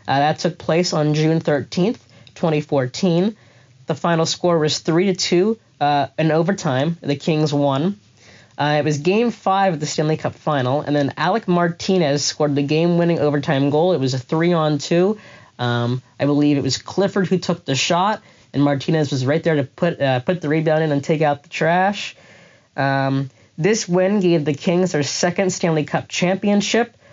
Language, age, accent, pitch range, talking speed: English, 20-39, American, 135-170 Hz, 180 wpm